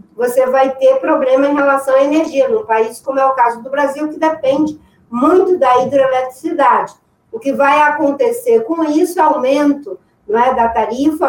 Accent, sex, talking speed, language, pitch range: Brazilian, female, 175 wpm, Portuguese, 245-315 Hz